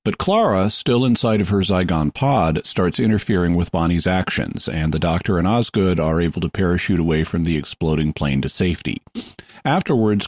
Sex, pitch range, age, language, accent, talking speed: male, 85-110 Hz, 50-69, English, American, 175 wpm